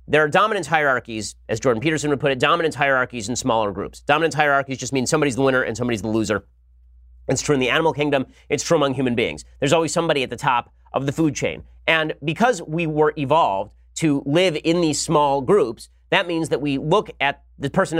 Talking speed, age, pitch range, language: 220 wpm, 30-49, 125-165 Hz, English